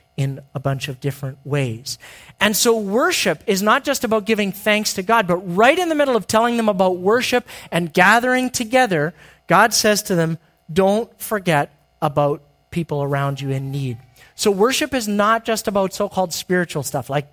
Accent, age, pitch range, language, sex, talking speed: American, 40-59, 150-205 Hz, English, male, 180 wpm